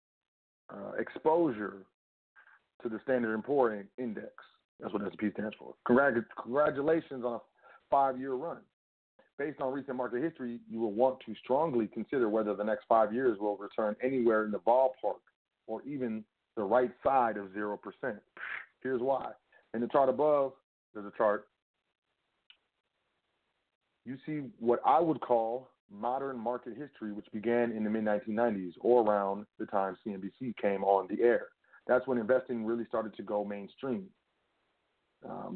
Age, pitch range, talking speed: 40-59, 105-130 Hz, 150 wpm